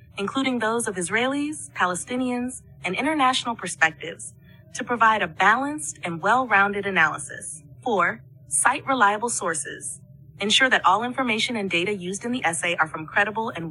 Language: English